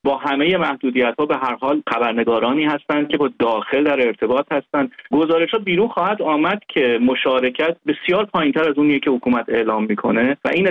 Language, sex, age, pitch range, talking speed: Persian, male, 30-49, 125-165 Hz, 175 wpm